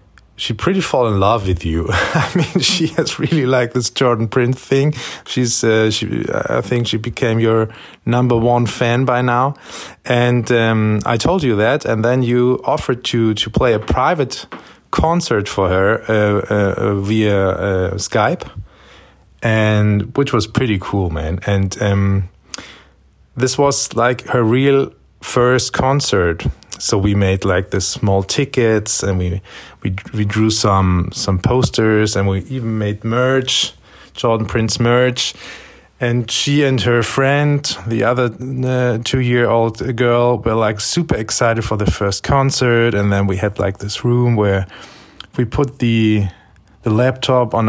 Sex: male